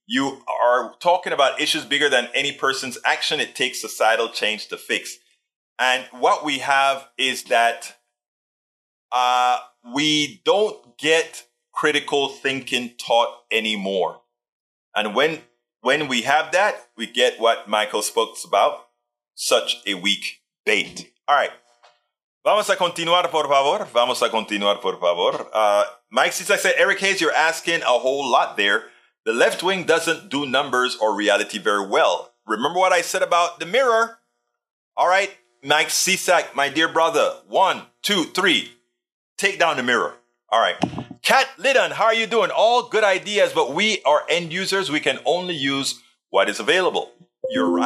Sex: male